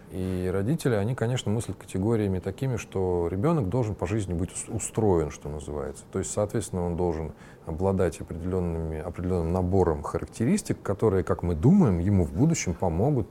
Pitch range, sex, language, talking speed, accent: 90-120 Hz, male, Russian, 150 wpm, native